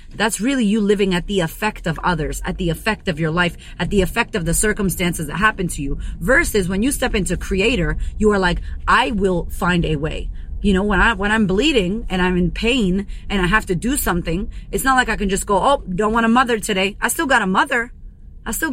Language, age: English, 30-49